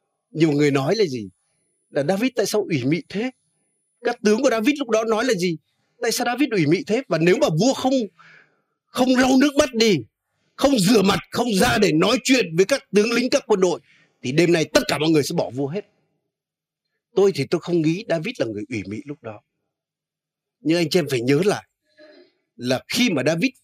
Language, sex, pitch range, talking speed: Vietnamese, male, 140-205 Hz, 220 wpm